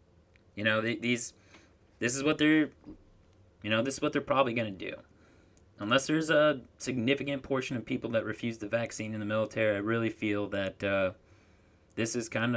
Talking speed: 185 wpm